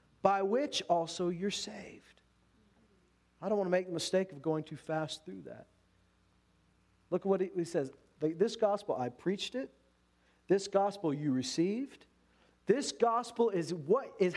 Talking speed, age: 155 wpm, 40-59